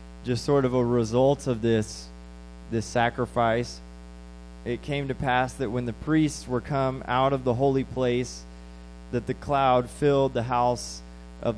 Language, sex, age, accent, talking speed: English, male, 20-39, American, 160 wpm